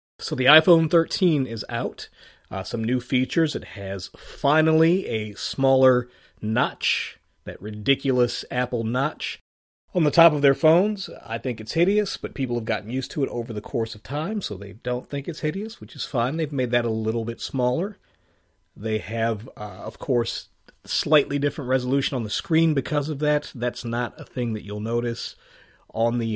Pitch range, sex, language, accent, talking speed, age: 110-140 Hz, male, English, American, 185 wpm, 40-59